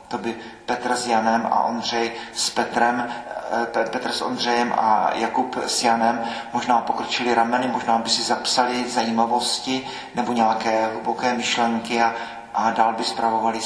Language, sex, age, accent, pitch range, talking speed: Czech, male, 40-59, native, 110-125 Hz, 140 wpm